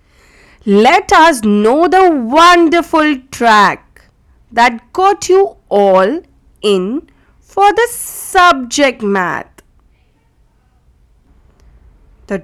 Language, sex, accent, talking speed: English, female, Indian, 75 wpm